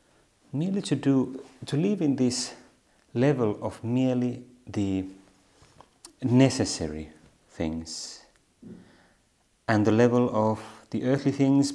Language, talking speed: Finnish, 100 wpm